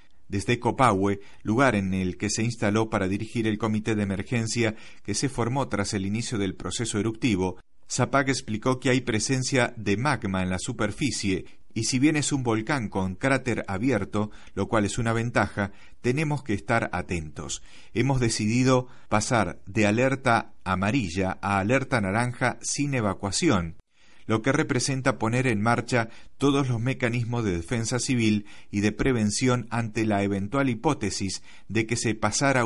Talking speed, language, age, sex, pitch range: 155 wpm, Spanish, 40-59, male, 100-125 Hz